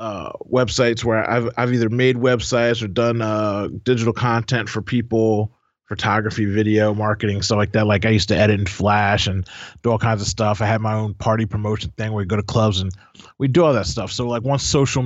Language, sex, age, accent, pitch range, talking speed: English, male, 30-49, American, 105-120 Hz, 225 wpm